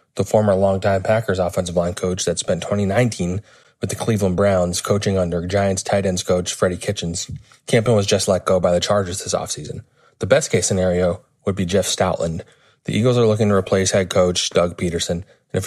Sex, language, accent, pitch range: male, English, American, 95-110 Hz